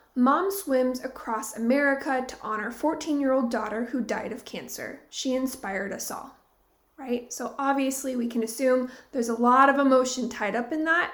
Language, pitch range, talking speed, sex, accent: English, 235-295 Hz, 180 wpm, female, American